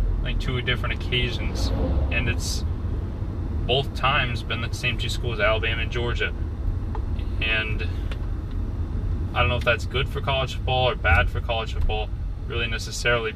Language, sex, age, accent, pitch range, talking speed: English, male, 20-39, American, 85-105 Hz, 150 wpm